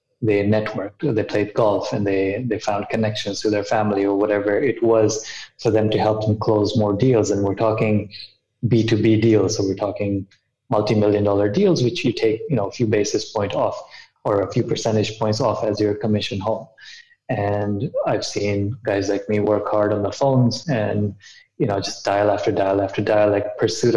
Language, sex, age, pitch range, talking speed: English, male, 20-39, 105-115 Hz, 200 wpm